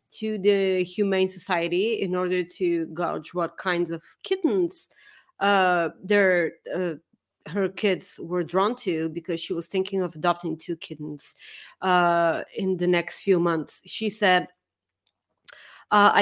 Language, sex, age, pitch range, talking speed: English, female, 30-49, 180-220 Hz, 135 wpm